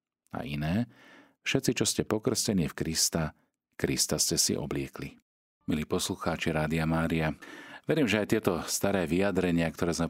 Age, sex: 40-59, male